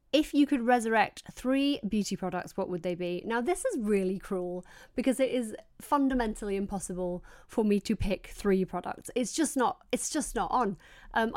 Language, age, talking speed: English, 30-49, 185 wpm